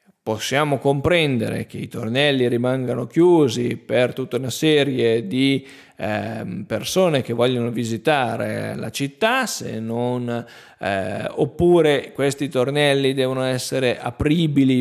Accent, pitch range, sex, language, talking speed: native, 120-150 Hz, male, Italian, 105 wpm